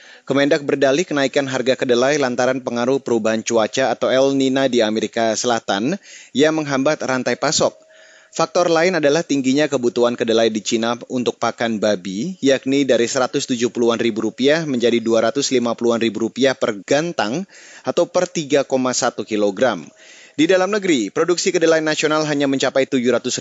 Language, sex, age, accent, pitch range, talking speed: Indonesian, male, 30-49, native, 115-140 Hz, 130 wpm